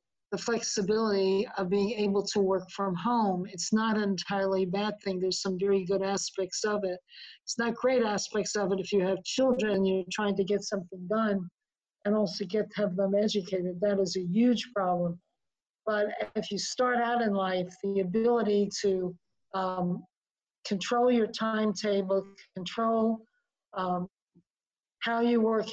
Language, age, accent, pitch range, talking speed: English, 50-69, American, 195-225 Hz, 160 wpm